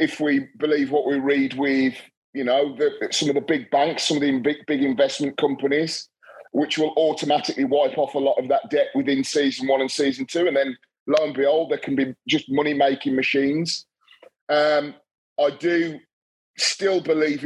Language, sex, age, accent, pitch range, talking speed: English, male, 30-49, British, 135-155 Hz, 185 wpm